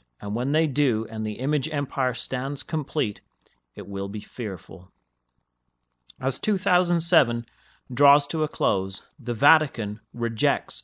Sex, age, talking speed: male, 30-49, 125 wpm